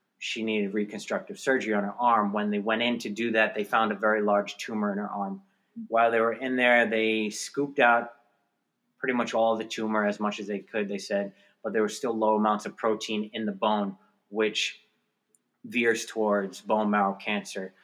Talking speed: 205 wpm